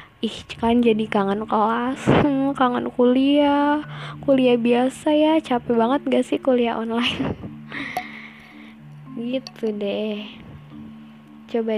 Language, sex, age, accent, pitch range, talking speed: Indonesian, female, 10-29, native, 200-255 Hz, 95 wpm